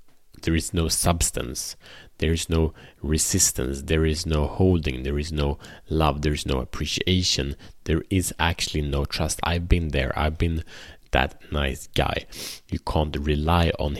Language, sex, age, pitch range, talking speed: Swedish, male, 30-49, 75-85 Hz, 160 wpm